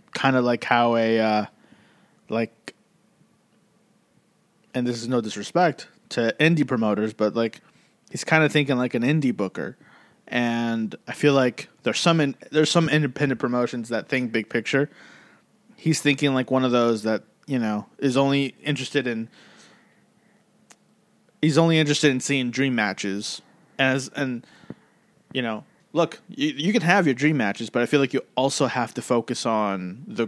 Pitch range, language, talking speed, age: 115-140 Hz, English, 160 wpm, 20-39